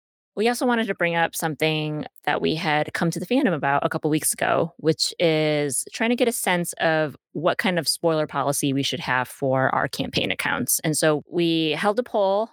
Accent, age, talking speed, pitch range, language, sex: American, 20-39, 220 wpm, 150-190 Hz, English, female